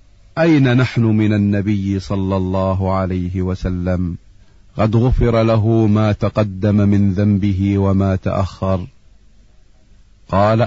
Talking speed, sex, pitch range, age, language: 100 wpm, male, 100-115 Hz, 40-59, Arabic